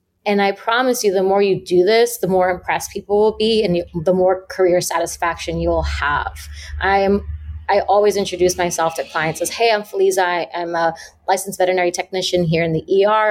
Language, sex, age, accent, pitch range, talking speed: English, female, 30-49, American, 165-200 Hz, 210 wpm